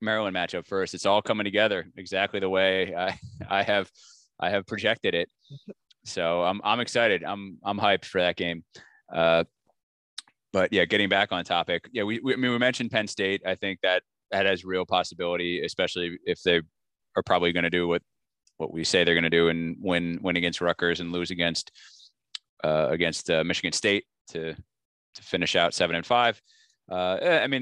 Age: 20-39